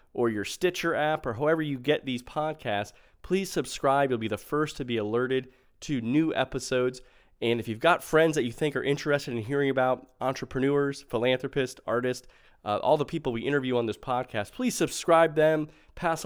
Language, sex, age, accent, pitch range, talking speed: English, male, 30-49, American, 115-145 Hz, 190 wpm